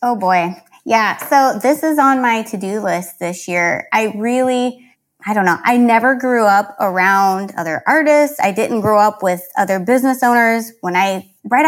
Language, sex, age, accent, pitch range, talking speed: English, female, 20-39, American, 190-245 Hz, 180 wpm